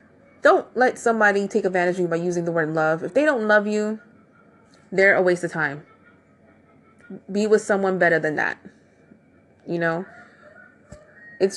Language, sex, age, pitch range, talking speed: English, female, 20-39, 170-205 Hz, 160 wpm